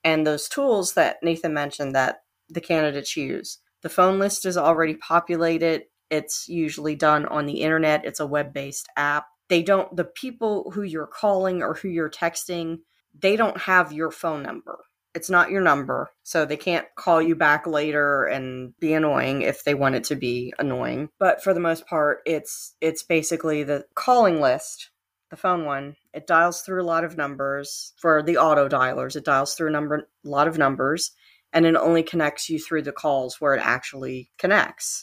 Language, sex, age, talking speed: English, female, 30-49, 190 wpm